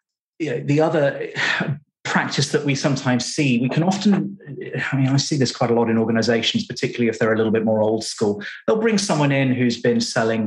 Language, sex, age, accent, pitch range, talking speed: English, male, 30-49, British, 120-190 Hz, 205 wpm